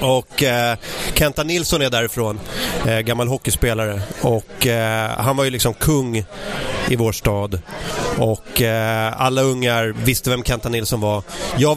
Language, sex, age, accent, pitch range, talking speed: English, male, 30-49, Swedish, 120-145 Hz, 150 wpm